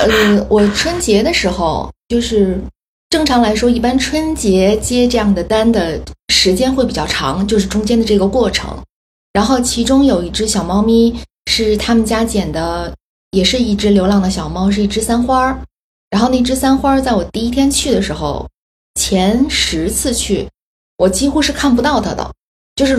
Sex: female